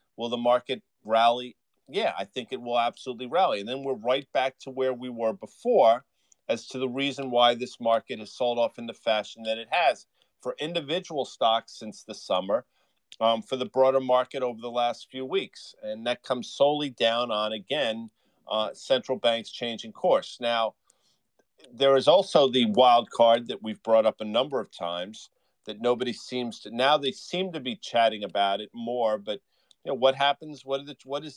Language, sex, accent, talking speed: English, male, American, 190 wpm